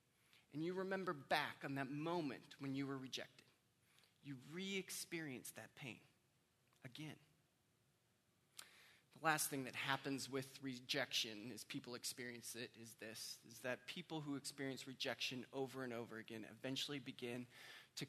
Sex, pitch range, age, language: male, 130-160 Hz, 20-39, English